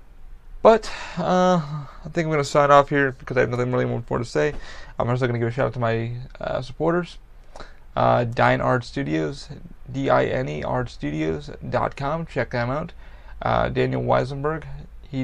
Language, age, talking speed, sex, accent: English, 30-49, 170 wpm, male, American